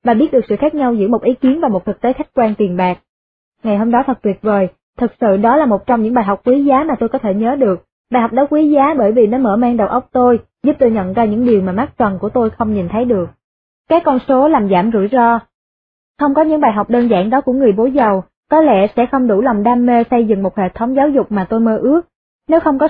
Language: Vietnamese